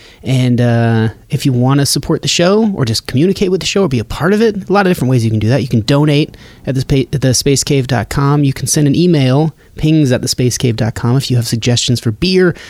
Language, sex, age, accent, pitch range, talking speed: English, male, 30-49, American, 125-175 Hz, 240 wpm